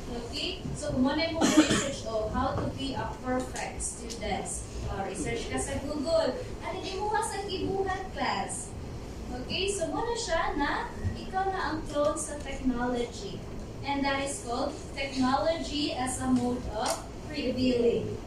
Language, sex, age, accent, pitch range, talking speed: English, female, 20-39, Filipino, 265-320 Hz, 140 wpm